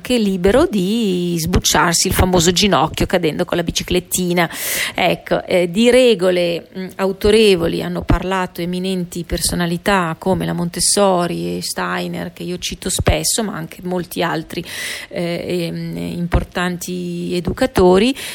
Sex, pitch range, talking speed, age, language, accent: female, 175-210 Hz, 120 wpm, 30-49, Italian, native